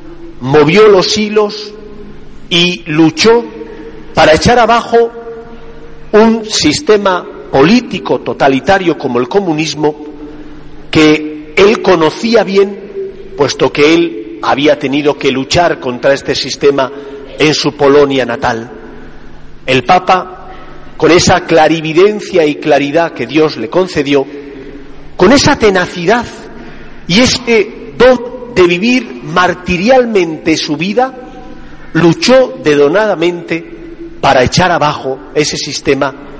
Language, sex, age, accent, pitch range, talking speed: Spanish, male, 40-59, Spanish, 145-210 Hz, 100 wpm